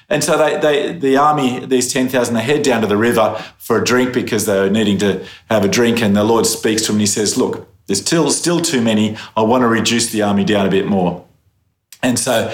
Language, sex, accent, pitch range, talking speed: English, male, Australian, 105-125 Hz, 250 wpm